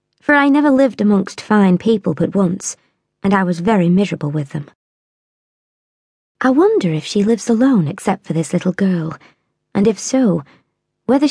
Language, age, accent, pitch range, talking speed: English, 20-39, British, 170-210 Hz, 165 wpm